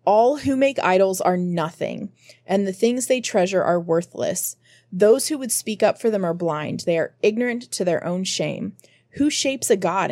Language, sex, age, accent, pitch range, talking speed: English, female, 20-39, American, 180-225 Hz, 195 wpm